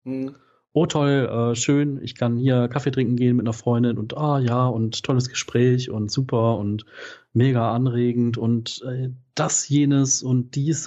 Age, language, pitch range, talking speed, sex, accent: 40-59, German, 110-125 Hz, 165 wpm, male, German